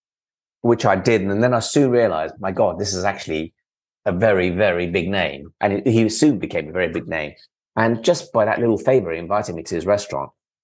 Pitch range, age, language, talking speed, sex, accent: 90-105 Hz, 30-49, English, 220 wpm, male, British